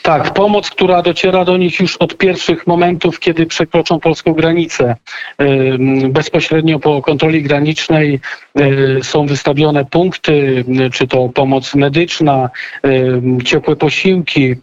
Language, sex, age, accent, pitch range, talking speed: Polish, male, 40-59, native, 140-160 Hz, 110 wpm